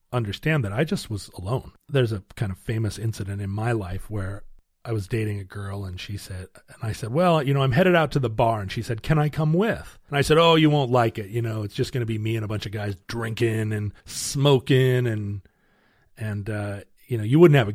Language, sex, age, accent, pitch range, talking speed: English, male, 40-59, American, 105-155 Hz, 255 wpm